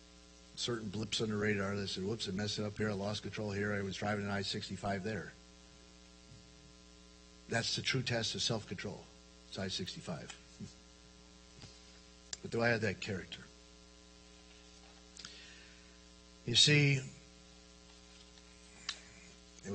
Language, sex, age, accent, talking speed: English, male, 50-69, American, 120 wpm